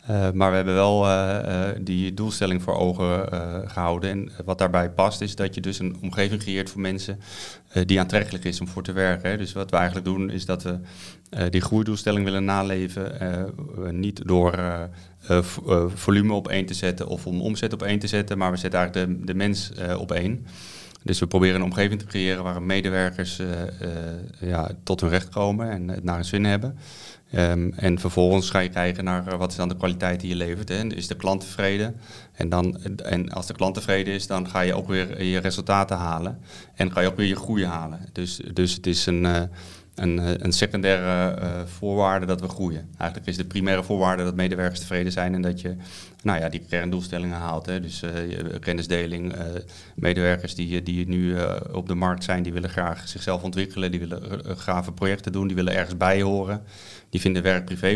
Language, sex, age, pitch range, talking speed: Dutch, male, 30-49, 90-95 Hz, 210 wpm